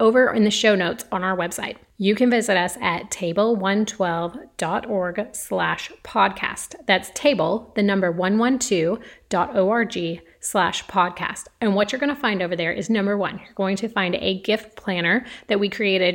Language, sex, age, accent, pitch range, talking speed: English, female, 30-49, American, 190-230 Hz, 165 wpm